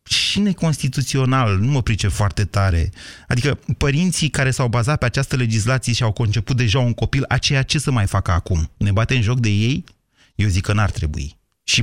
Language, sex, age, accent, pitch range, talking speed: Romanian, male, 30-49, native, 100-145 Hz, 200 wpm